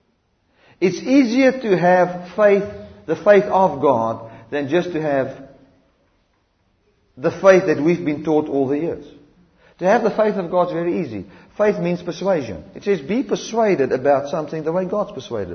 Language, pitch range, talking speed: English, 155-240 Hz, 170 wpm